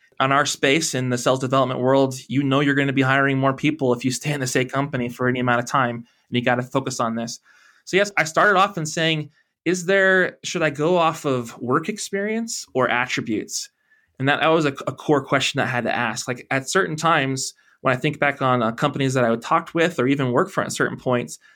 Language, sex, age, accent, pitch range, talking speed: English, male, 20-39, American, 125-155 Hz, 250 wpm